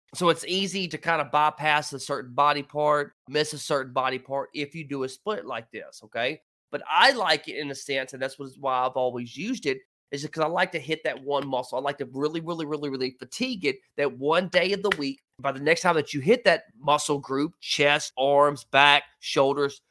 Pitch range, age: 140-175 Hz, 30-49